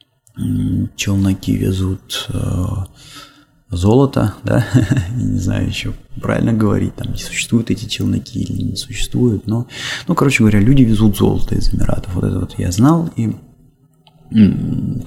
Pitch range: 95-125 Hz